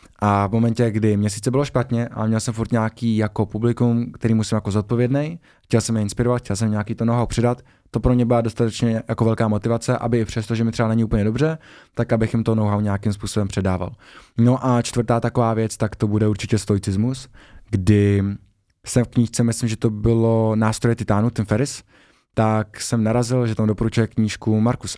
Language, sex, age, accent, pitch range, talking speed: Czech, male, 20-39, native, 105-120 Hz, 195 wpm